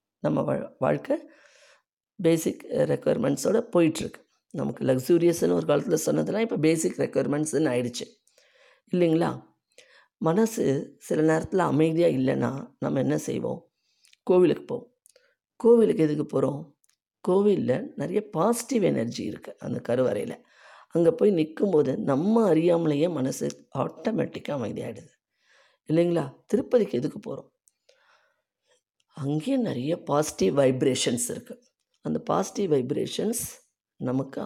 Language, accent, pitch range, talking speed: Tamil, native, 145-220 Hz, 100 wpm